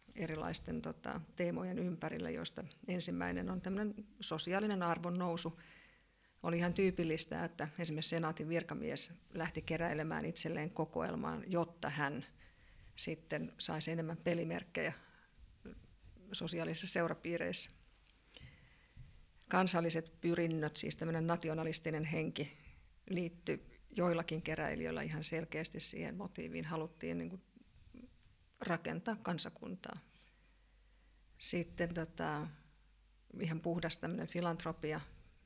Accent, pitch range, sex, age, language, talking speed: native, 160-175 Hz, female, 50-69, Finnish, 85 wpm